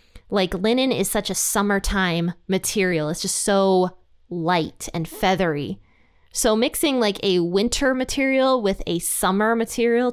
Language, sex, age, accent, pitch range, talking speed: English, female, 20-39, American, 175-225 Hz, 135 wpm